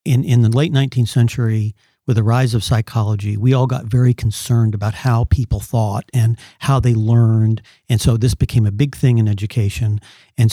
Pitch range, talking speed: 115-130 Hz, 195 wpm